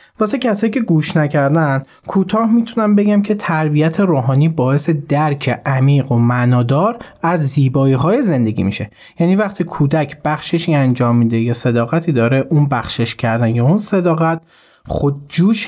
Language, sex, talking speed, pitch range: Persian, male, 145 wpm, 135-185 Hz